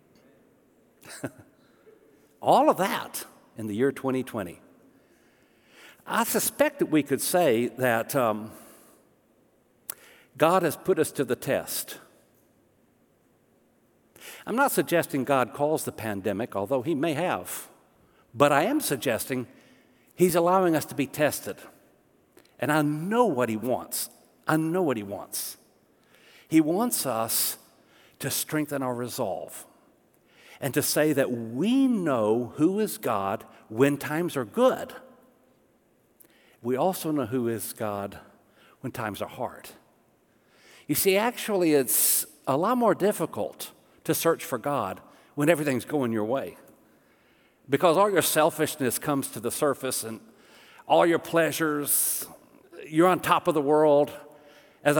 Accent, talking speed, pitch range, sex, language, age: American, 130 wpm, 125-165 Hz, male, English, 60-79